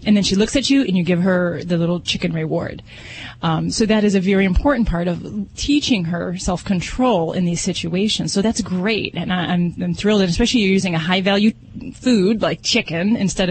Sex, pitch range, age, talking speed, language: female, 165-205 Hz, 30-49, 220 wpm, English